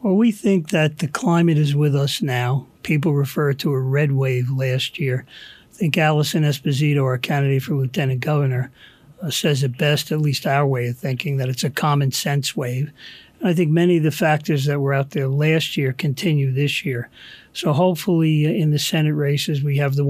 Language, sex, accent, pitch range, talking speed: English, male, American, 140-160 Hz, 200 wpm